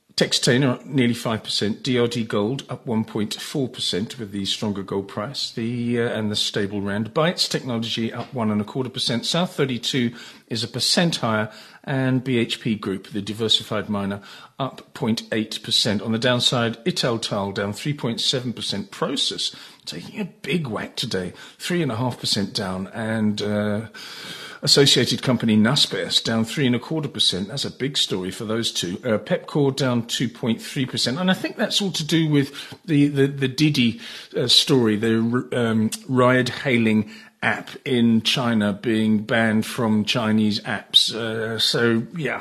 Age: 40-59